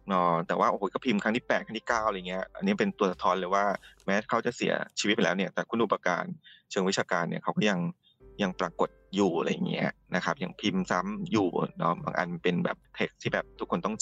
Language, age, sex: Thai, 20-39, male